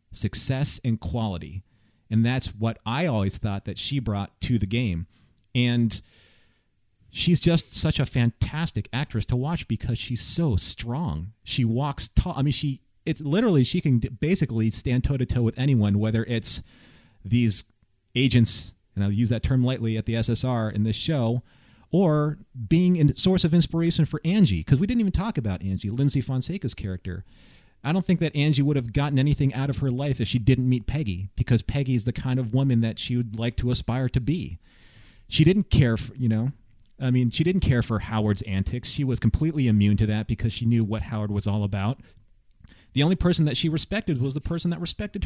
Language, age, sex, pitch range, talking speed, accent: English, 30-49, male, 105-140 Hz, 200 wpm, American